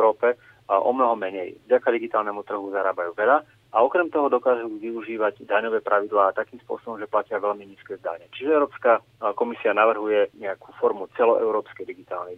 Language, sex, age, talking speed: Slovak, male, 30-49, 160 wpm